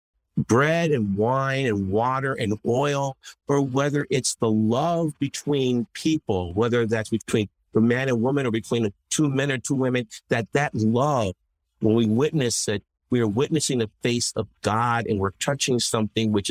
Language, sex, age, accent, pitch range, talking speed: English, male, 50-69, American, 95-135 Hz, 175 wpm